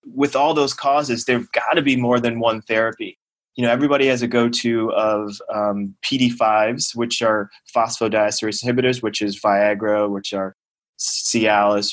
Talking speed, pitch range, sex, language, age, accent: 155 wpm, 105-120 Hz, male, English, 20-39, American